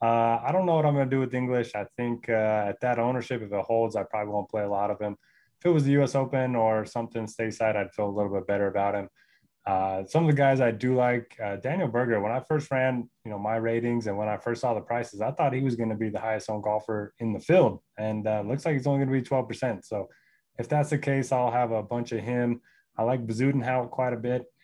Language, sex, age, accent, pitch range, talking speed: English, male, 20-39, American, 110-125 Hz, 280 wpm